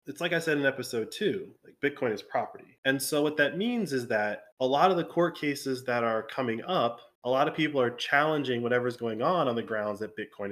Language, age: English, 20-39